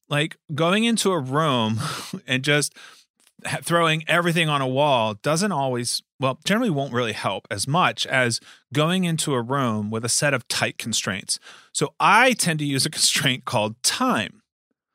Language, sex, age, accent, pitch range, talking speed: English, male, 30-49, American, 125-160 Hz, 165 wpm